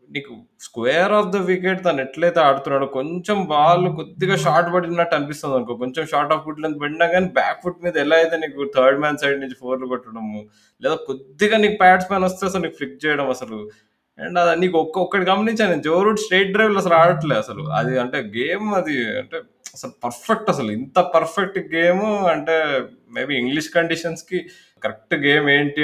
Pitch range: 125-170 Hz